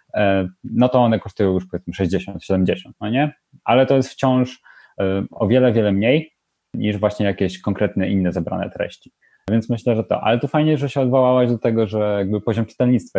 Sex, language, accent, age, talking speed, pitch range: male, Polish, native, 30-49, 180 wpm, 100-135 Hz